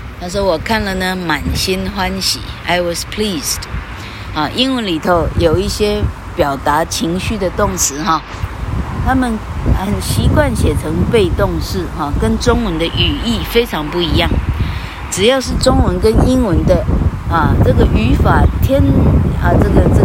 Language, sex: Chinese, female